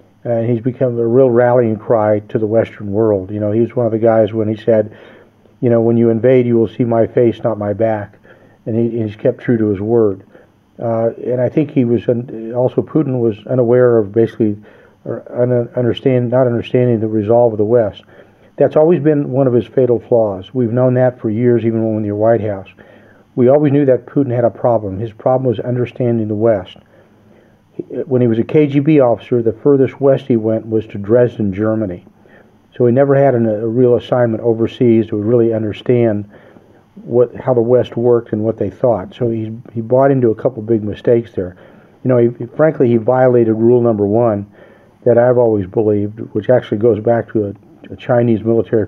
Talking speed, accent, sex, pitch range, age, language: 205 wpm, American, male, 110-125 Hz, 50-69, English